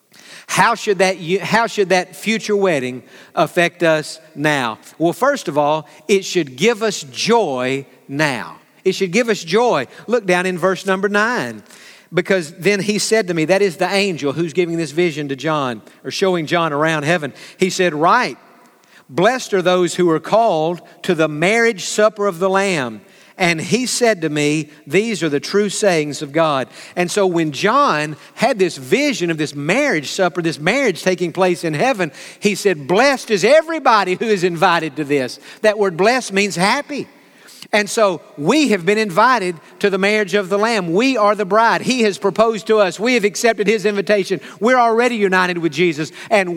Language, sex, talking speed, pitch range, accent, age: English, male, 185 wpm, 165-210 Hz, American, 50-69